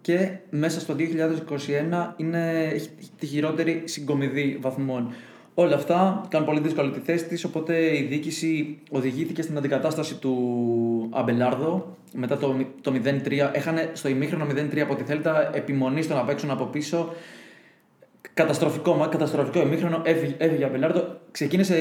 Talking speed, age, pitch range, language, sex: 130 wpm, 20-39, 145-175 Hz, Greek, male